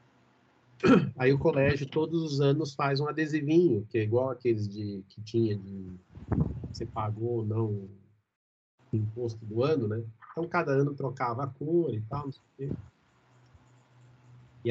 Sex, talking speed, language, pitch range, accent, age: male, 145 wpm, Portuguese, 110-135 Hz, Brazilian, 40-59